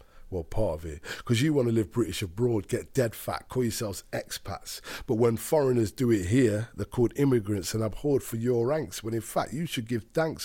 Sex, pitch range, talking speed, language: male, 110-130 Hz, 220 wpm, English